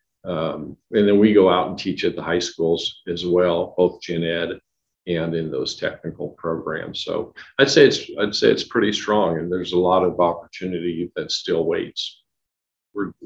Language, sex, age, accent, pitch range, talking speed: English, male, 50-69, American, 85-100 Hz, 185 wpm